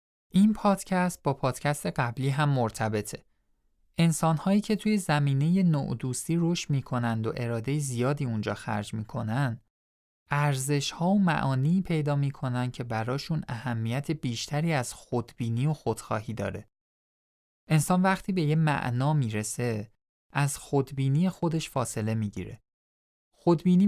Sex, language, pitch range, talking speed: male, Persian, 115-165 Hz, 120 wpm